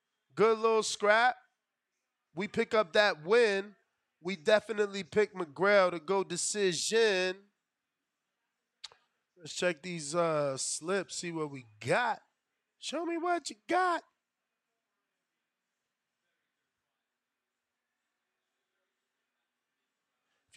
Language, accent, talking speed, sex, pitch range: English, American, 90 wpm, male, 155-210 Hz